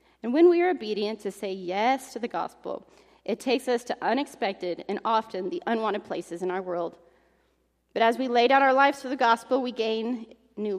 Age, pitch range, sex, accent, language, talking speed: 30-49, 205-260 Hz, female, American, English, 205 wpm